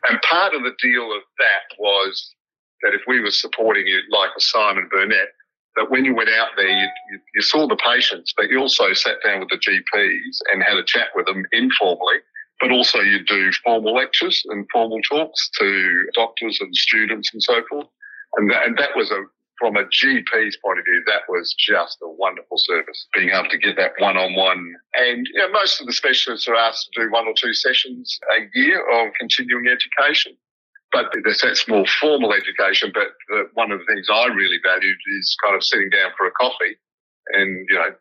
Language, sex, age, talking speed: English, male, 50-69, 200 wpm